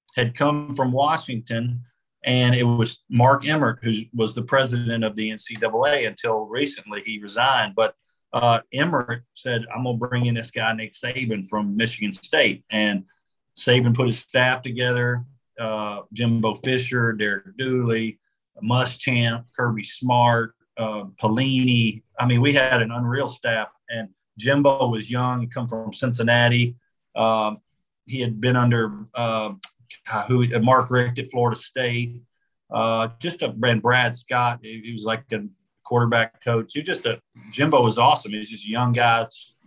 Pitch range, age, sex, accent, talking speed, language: 110-125 Hz, 50-69, male, American, 155 wpm, English